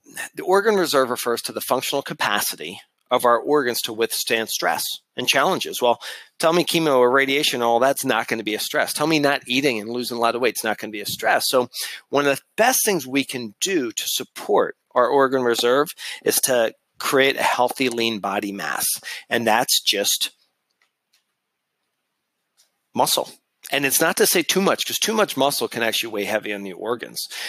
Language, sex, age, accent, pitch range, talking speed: English, male, 40-59, American, 120-150 Hz, 195 wpm